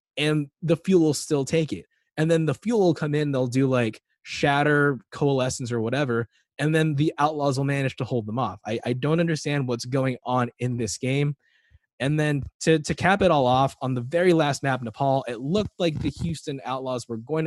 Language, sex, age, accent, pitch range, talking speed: English, male, 20-39, American, 125-155 Hz, 215 wpm